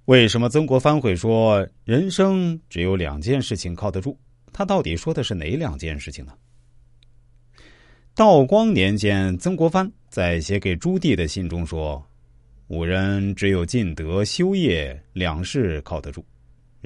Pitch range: 85-120 Hz